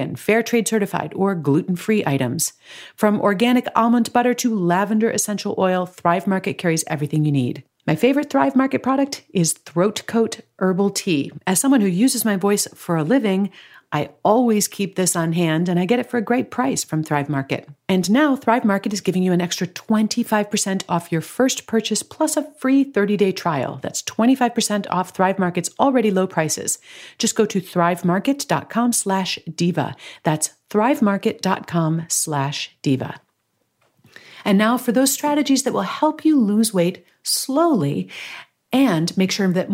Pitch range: 175-225 Hz